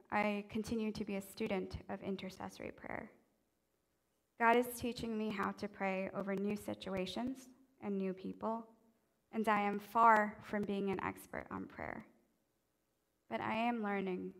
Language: English